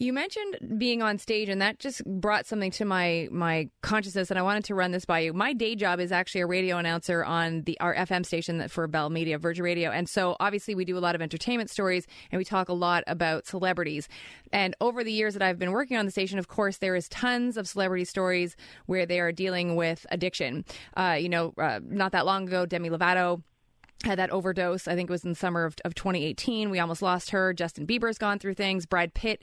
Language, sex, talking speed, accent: English, female, 235 wpm, American